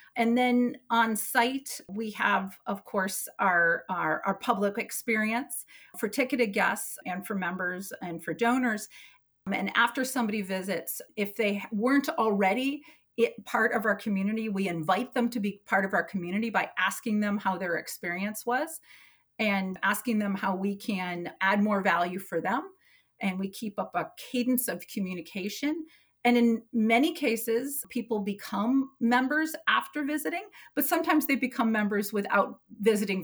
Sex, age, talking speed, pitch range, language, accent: female, 40-59, 155 wpm, 195-245 Hz, English, American